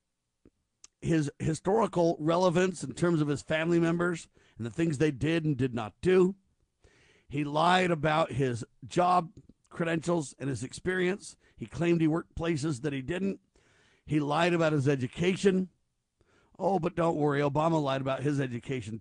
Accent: American